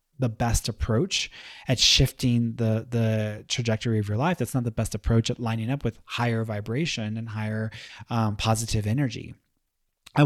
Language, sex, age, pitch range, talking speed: English, male, 30-49, 110-130 Hz, 165 wpm